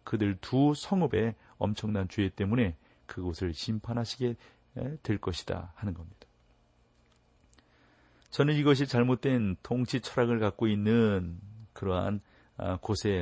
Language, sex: Korean, male